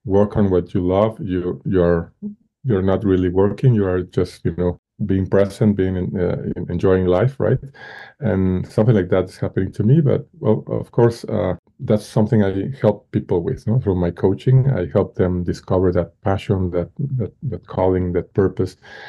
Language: English